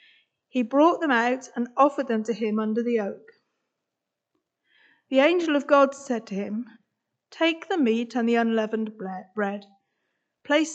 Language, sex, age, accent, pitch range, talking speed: English, female, 50-69, British, 225-285 Hz, 150 wpm